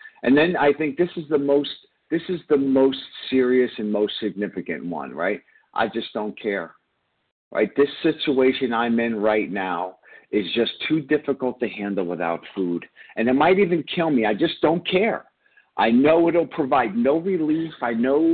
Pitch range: 105-155 Hz